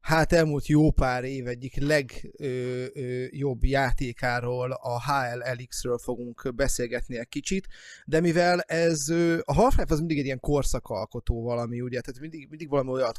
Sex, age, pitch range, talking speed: male, 30-49, 120-150 Hz, 145 wpm